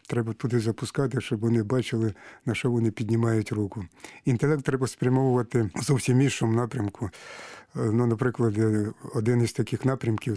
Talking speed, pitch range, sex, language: 140 wpm, 115-125 Hz, male, Ukrainian